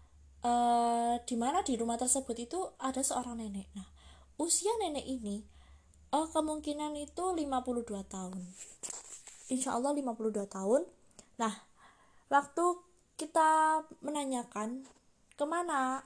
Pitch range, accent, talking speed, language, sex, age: 220-280 Hz, native, 95 wpm, Indonesian, female, 20-39